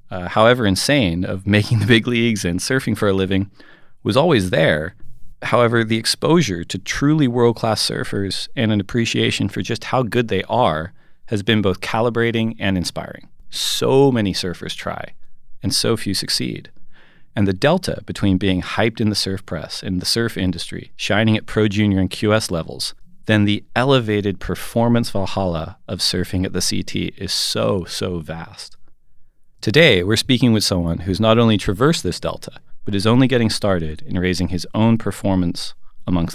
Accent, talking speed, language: American, 170 wpm, English